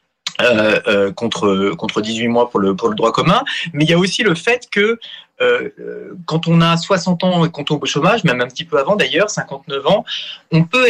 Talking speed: 225 wpm